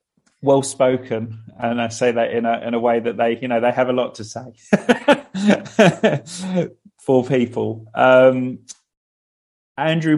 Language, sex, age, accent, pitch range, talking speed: English, male, 30-49, British, 115-130 Hz, 140 wpm